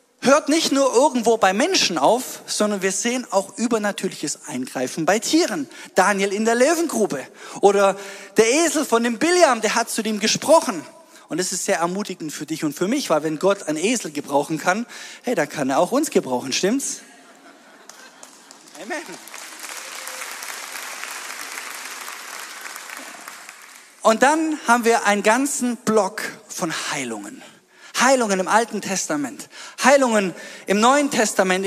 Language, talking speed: German, 140 wpm